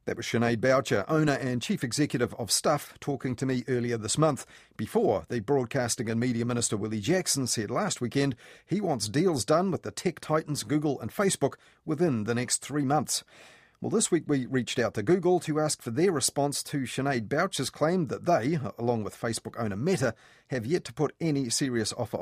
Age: 40-59